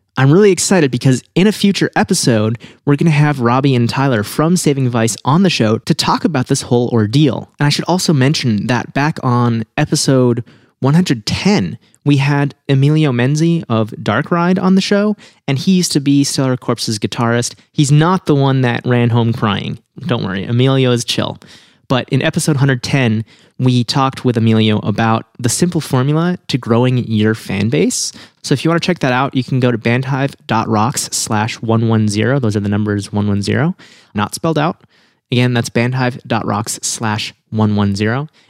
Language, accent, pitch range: English, American, 115-150 Hz